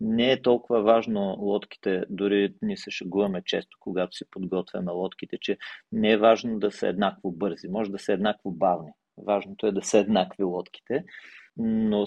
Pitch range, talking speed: 105-130 Hz, 170 wpm